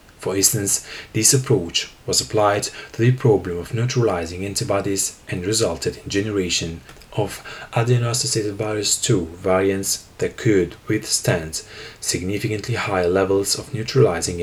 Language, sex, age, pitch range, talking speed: English, male, 30-49, 95-120 Hz, 120 wpm